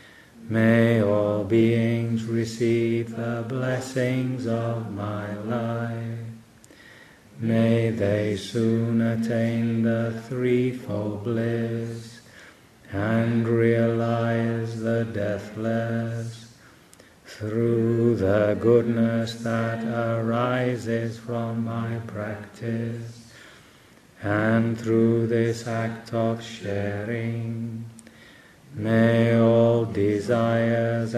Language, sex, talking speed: English, male, 70 wpm